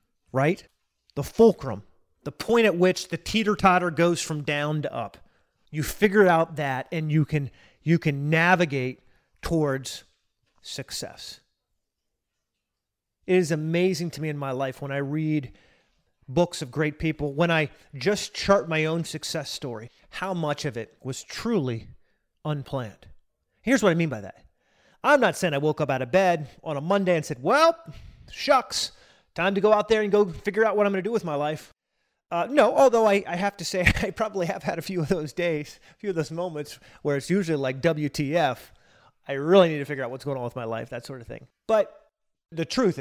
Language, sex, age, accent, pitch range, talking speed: English, male, 30-49, American, 145-185 Hz, 195 wpm